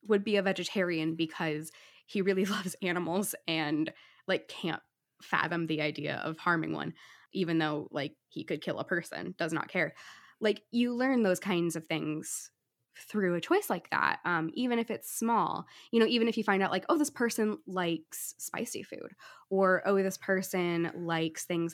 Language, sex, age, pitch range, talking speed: English, female, 10-29, 170-230 Hz, 180 wpm